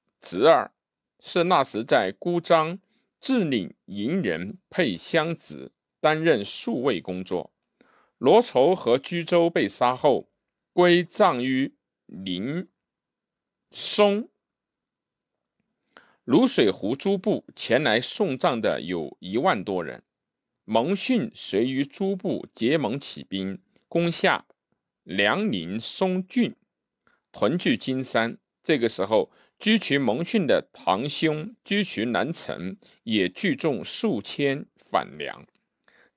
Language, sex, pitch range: Chinese, male, 135-205 Hz